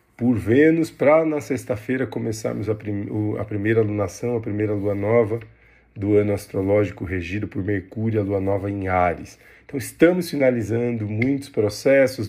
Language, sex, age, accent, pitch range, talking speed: Portuguese, male, 40-59, Brazilian, 100-120 Hz, 155 wpm